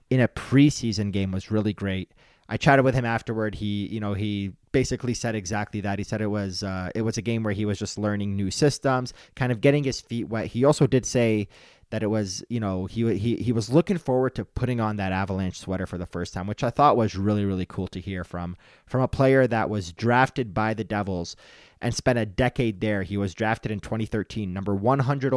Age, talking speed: 30-49, 230 wpm